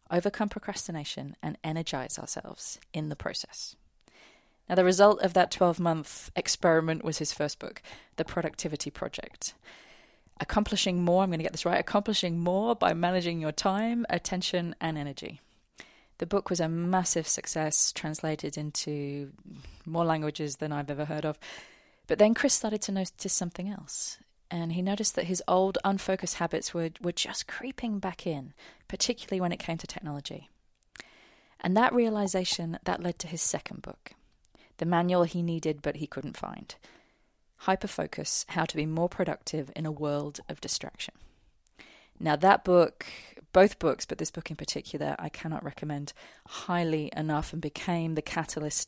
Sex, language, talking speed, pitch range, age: female, English, 160 wpm, 155-190 Hz, 20-39